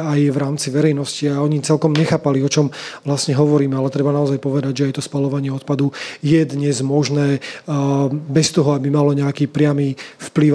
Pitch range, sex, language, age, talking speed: 140-155 Hz, male, Slovak, 30-49, 175 wpm